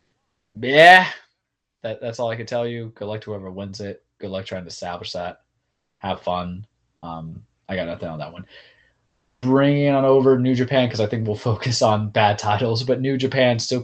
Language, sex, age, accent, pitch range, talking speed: English, male, 20-39, American, 95-120 Hz, 200 wpm